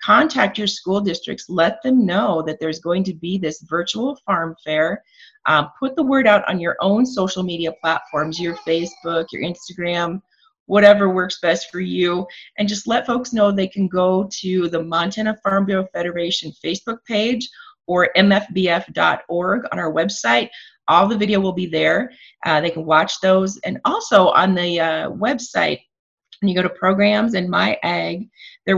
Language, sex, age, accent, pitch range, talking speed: English, female, 30-49, American, 170-210 Hz, 170 wpm